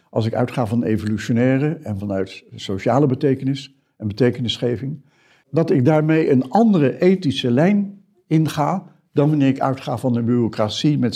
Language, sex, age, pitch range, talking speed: Dutch, male, 60-79, 120-165 Hz, 145 wpm